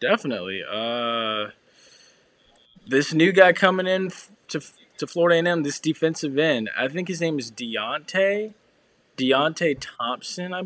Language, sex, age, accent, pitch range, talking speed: English, male, 20-39, American, 120-165 Hz, 140 wpm